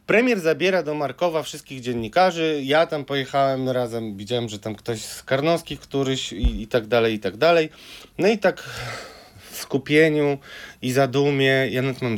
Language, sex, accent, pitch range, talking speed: Polish, male, native, 110-145 Hz, 170 wpm